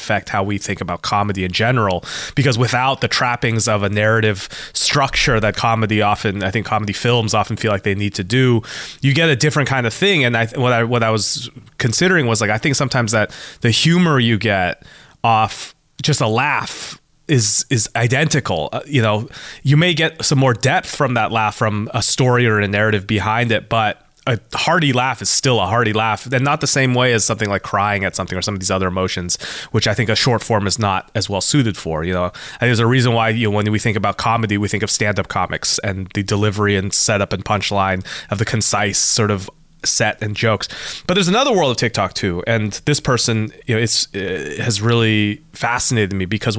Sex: male